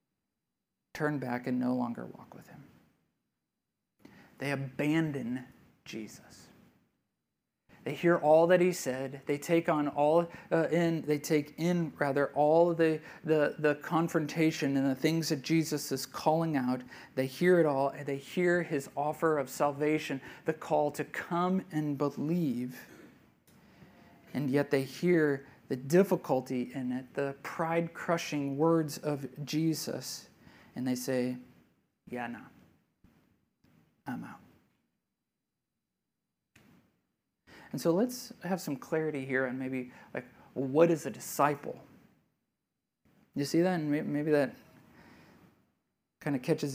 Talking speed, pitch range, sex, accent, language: 130 wpm, 135-165 Hz, male, American, English